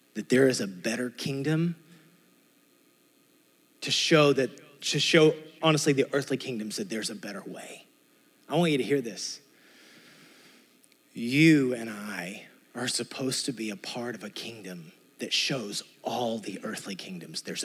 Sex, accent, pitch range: male, American, 125-170 Hz